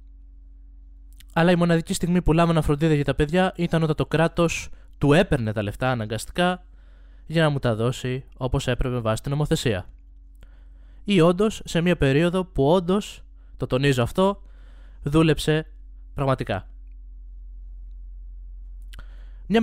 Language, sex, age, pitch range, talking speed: Greek, male, 20-39, 95-160 Hz, 130 wpm